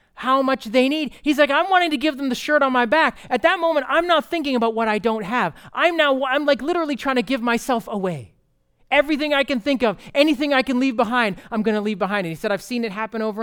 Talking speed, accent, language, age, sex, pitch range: 265 wpm, American, English, 30-49, male, 160-260 Hz